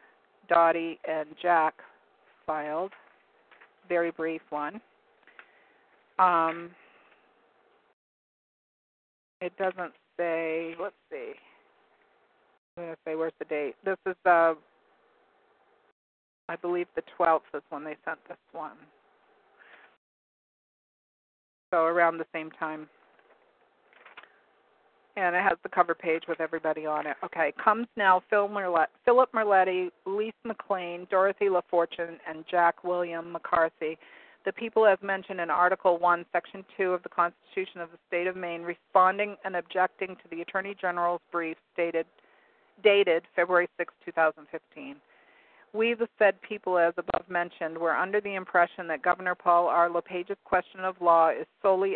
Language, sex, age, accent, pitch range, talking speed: English, female, 50-69, American, 165-190 Hz, 130 wpm